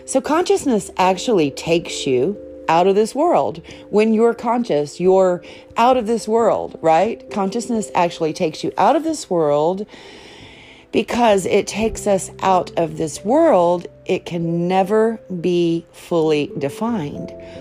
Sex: female